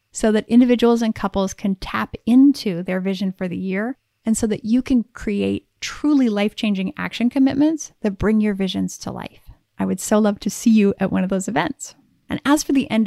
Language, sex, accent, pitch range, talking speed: English, female, American, 195-240 Hz, 215 wpm